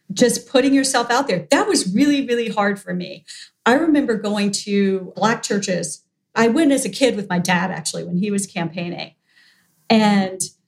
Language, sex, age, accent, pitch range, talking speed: English, female, 40-59, American, 185-235 Hz, 180 wpm